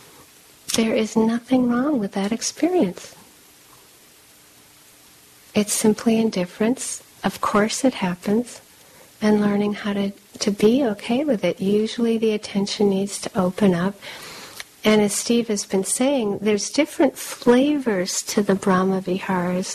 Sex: female